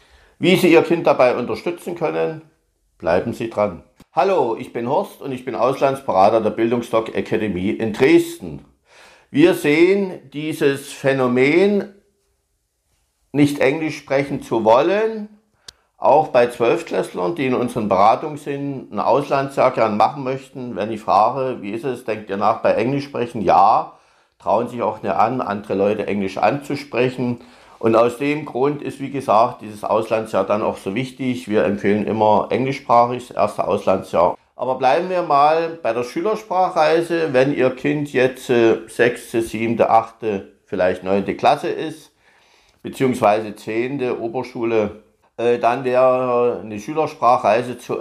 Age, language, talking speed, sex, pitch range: 50-69, German, 140 wpm, male, 115-155 Hz